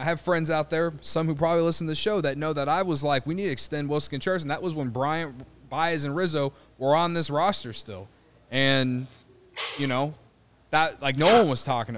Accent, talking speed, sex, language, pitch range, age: American, 230 wpm, male, English, 125-170 Hz, 20-39